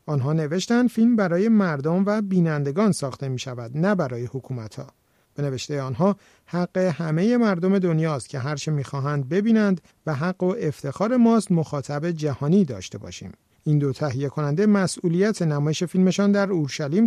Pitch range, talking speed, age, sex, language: 145-190 Hz, 150 wpm, 50-69, male, Persian